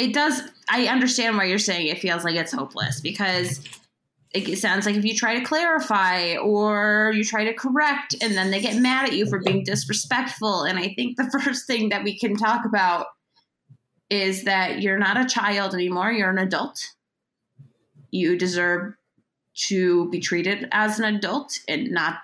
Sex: female